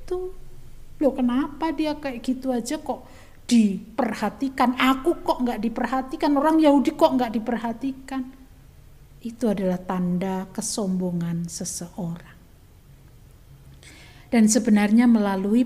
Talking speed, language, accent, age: 95 wpm, Indonesian, native, 50-69